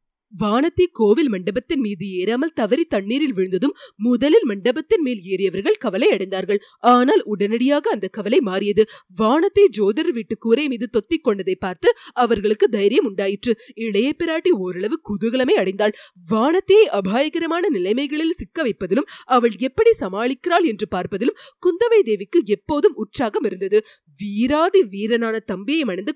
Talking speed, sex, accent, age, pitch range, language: 70 wpm, female, native, 20-39, 205-315 Hz, Tamil